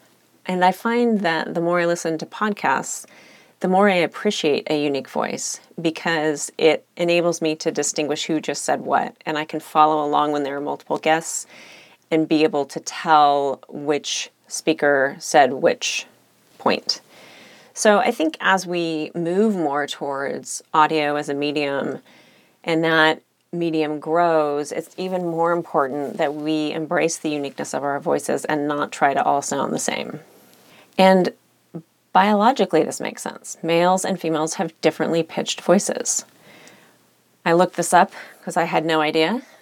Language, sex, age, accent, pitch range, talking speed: English, female, 30-49, American, 155-175 Hz, 160 wpm